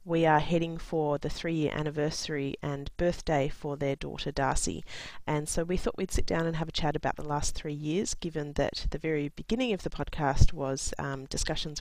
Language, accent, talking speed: English, Australian, 205 wpm